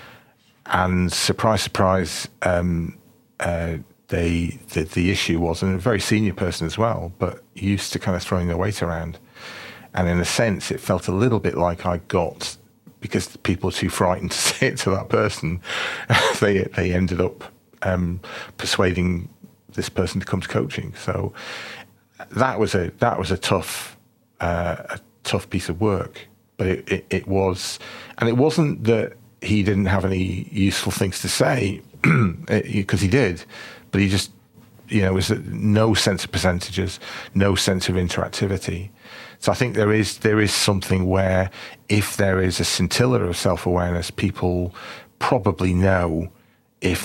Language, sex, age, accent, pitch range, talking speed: English, male, 40-59, British, 85-105 Hz, 165 wpm